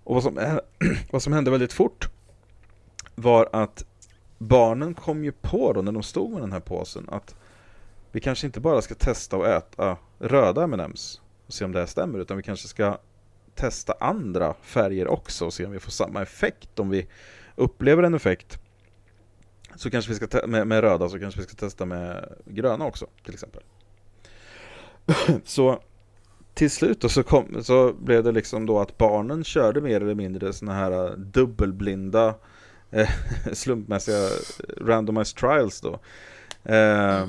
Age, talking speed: 30-49, 165 wpm